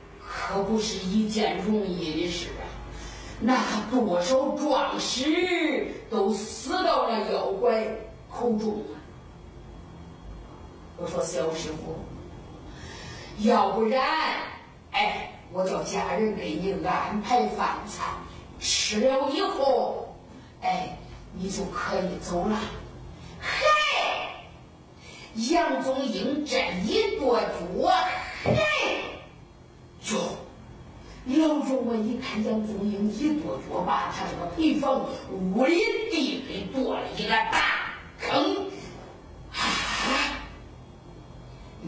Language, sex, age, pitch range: Chinese, female, 40-59, 195-275 Hz